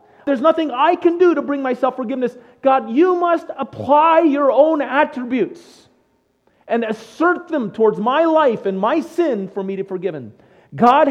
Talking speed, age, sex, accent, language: 165 wpm, 40-59, male, American, English